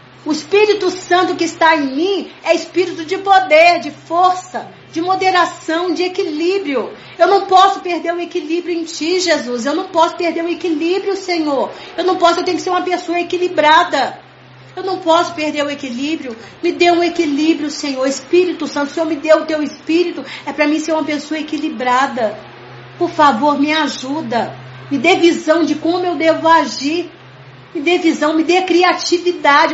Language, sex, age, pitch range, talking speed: Portuguese, female, 40-59, 300-360 Hz, 175 wpm